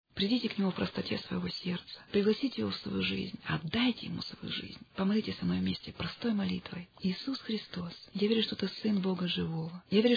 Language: Russian